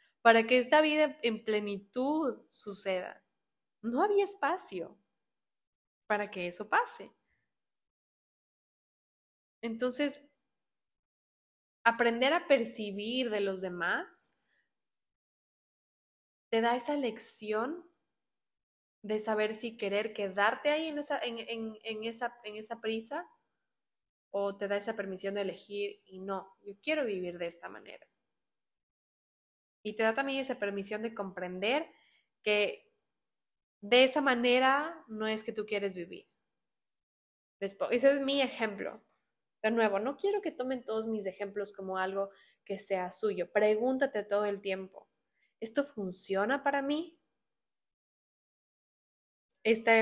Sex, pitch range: female, 205-260 Hz